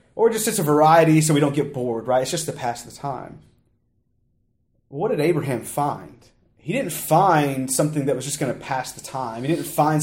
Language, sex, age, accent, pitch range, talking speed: English, male, 30-49, American, 120-150 Hz, 215 wpm